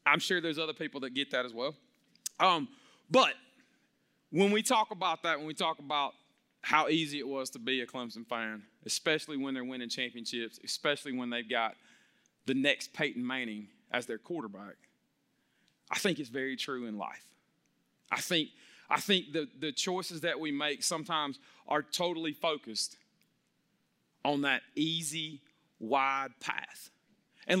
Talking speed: 160 wpm